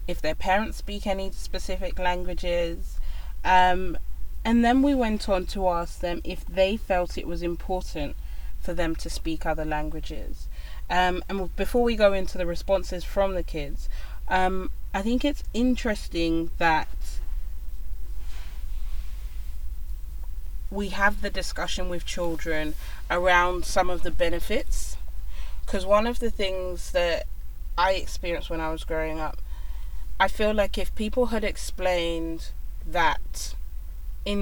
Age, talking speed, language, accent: 20-39, 135 wpm, English, British